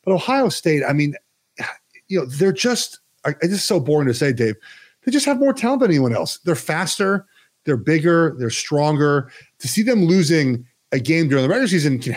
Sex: male